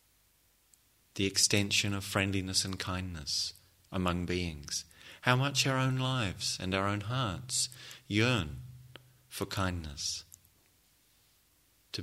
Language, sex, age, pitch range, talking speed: English, male, 30-49, 95-125 Hz, 105 wpm